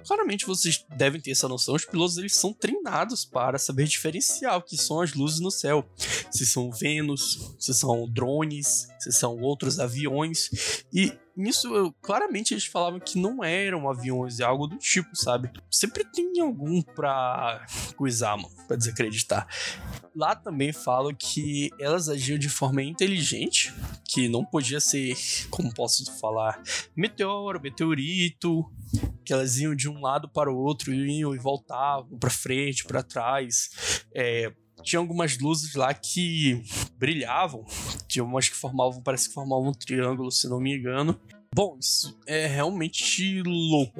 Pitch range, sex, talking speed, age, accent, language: 125-165 Hz, male, 155 wpm, 10-29, Brazilian, Portuguese